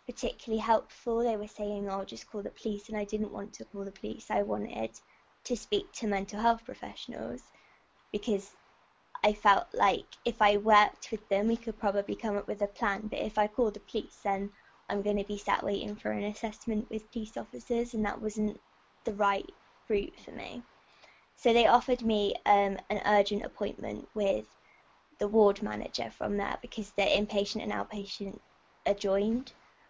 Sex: female